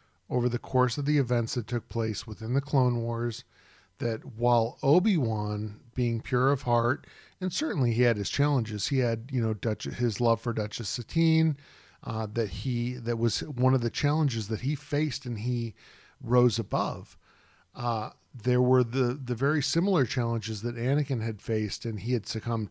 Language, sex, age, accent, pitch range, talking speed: English, male, 40-59, American, 110-130 Hz, 180 wpm